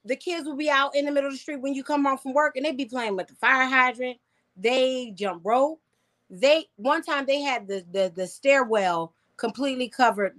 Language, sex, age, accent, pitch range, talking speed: English, female, 30-49, American, 195-250 Hz, 225 wpm